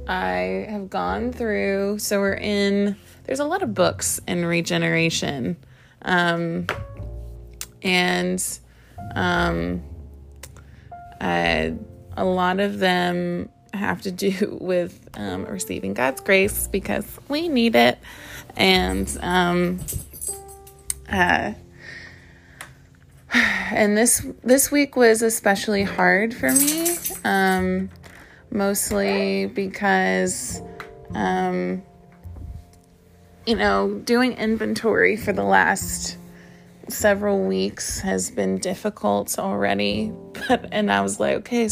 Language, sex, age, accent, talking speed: English, female, 20-39, American, 100 wpm